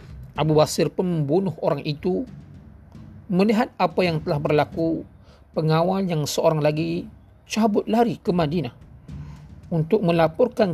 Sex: male